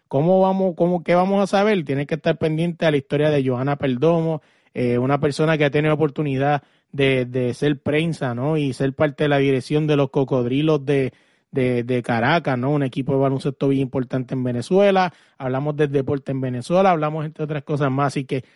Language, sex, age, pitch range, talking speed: Spanish, male, 30-49, 140-160 Hz, 205 wpm